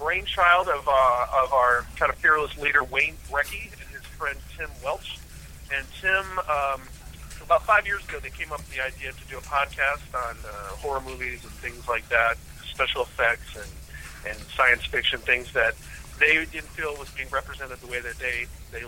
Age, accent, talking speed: 40-59, American, 190 wpm